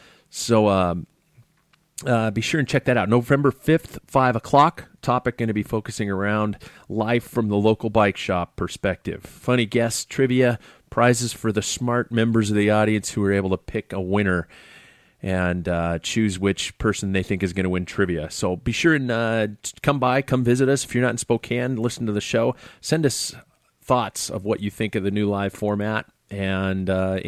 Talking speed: 195 wpm